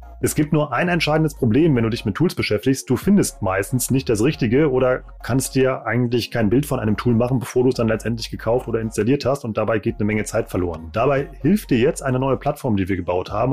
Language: German